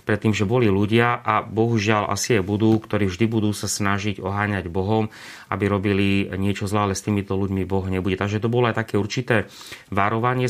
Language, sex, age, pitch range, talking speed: Slovak, male, 30-49, 100-115 Hz, 185 wpm